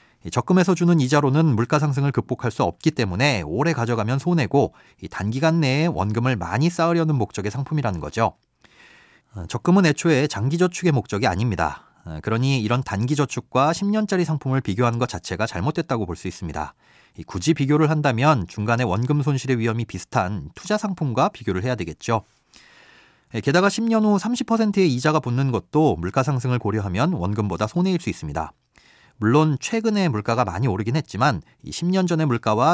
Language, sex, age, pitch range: Korean, male, 30-49, 115-165 Hz